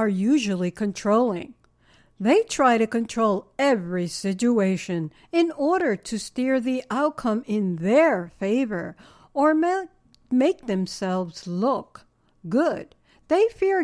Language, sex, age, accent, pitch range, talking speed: English, female, 60-79, American, 205-290 Hz, 115 wpm